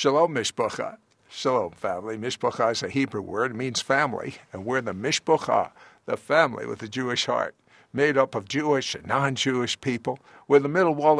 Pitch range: 115-155 Hz